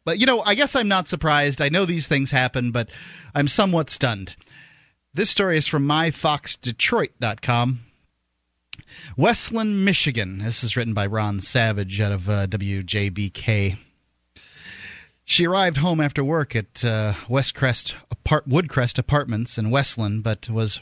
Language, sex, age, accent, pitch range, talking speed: English, male, 30-49, American, 110-150 Hz, 140 wpm